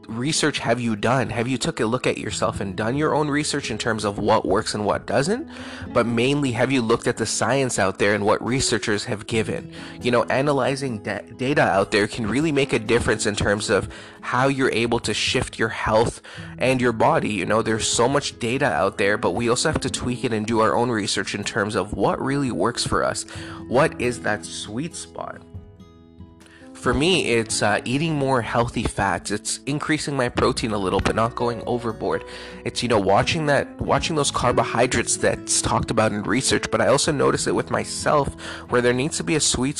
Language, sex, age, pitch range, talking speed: English, male, 20-39, 105-130 Hz, 215 wpm